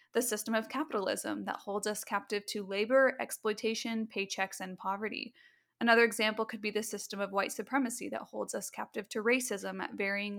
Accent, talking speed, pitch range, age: American, 180 wpm, 205-240 Hz, 10-29